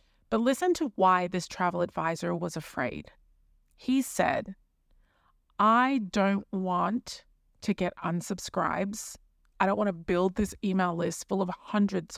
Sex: female